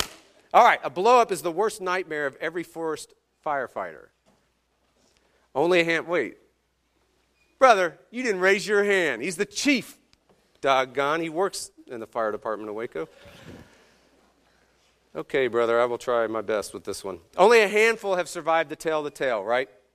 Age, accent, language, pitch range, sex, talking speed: 40-59, American, English, 130-180 Hz, male, 160 wpm